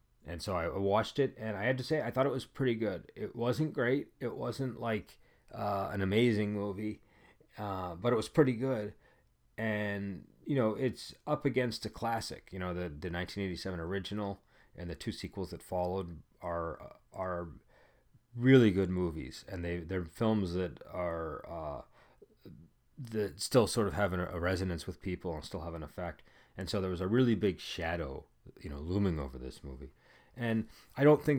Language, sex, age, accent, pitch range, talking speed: English, male, 30-49, American, 95-115 Hz, 185 wpm